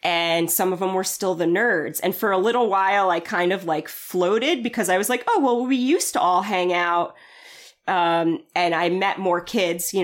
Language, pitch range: English, 165-225 Hz